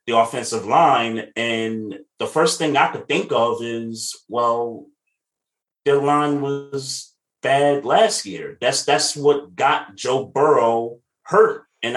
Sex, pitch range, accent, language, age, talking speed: male, 105-145 Hz, American, English, 30-49, 135 wpm